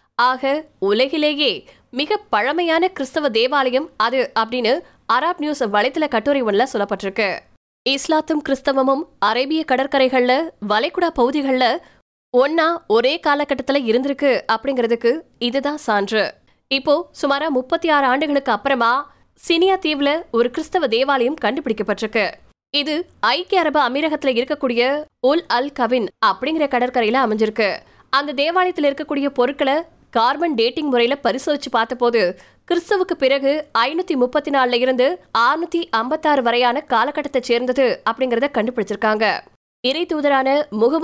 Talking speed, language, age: 85 wpm, Tamil, 20-39